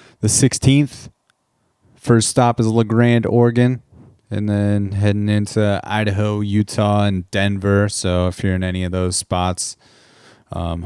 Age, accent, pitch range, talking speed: 20-39, American, 95-110 Hz, 140 wpm